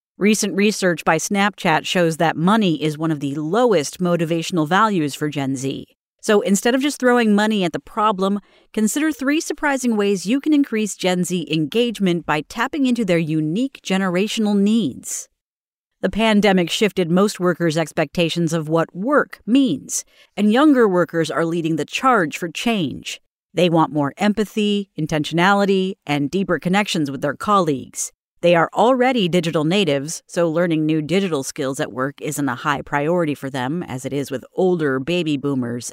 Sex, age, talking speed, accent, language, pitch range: female, 40-59, 165 wpm, American, English, 155-220 Hz